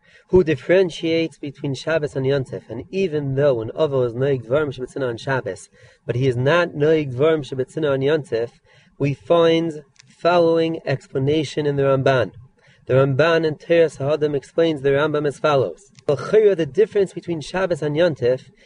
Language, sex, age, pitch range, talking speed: English, male, 30-49, 135-165 Hz, 155 wpm